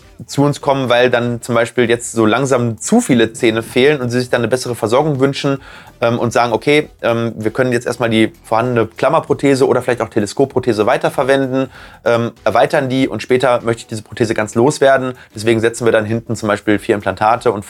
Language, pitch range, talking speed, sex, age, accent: German, 110-145 Hz, 205 wpm, male, 30-49, German